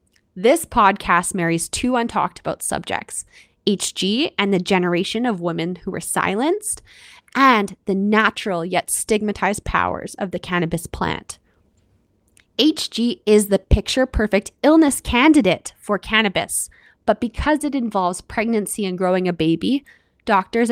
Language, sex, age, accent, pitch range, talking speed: English, female, 20-39, American, 190-245 Hz, 125 wpm